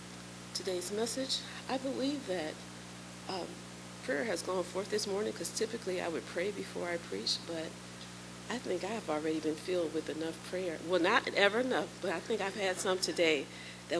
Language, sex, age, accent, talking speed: English, female, 40-59, American, 185 wpm